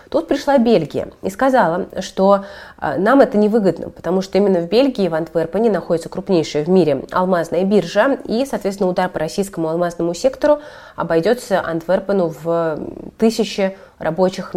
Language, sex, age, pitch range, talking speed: Russian, female, 30-49, 160-200 Hz, 140 wpm